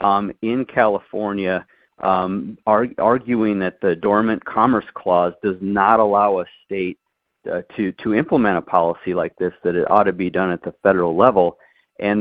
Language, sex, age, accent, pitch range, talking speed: English, male, 40-59, American, 90-110 Hz, 165 wpm